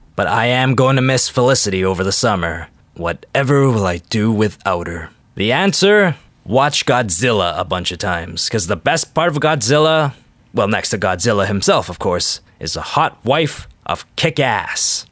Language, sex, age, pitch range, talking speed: English, male, 20-39, 110-155 Hz, 170 wpm